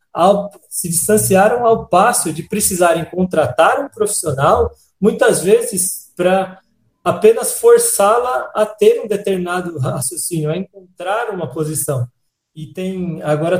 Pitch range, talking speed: 150-195 Hz, 120 wpm